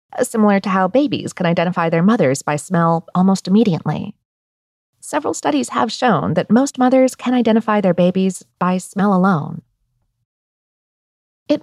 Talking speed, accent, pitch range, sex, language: 140 wpm, American, 170-255 Hz, female, English